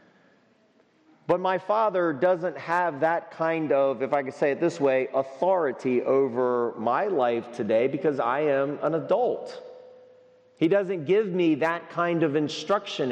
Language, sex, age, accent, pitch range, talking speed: English, male, 40-59, American, 145-180 Hz, 150 wpm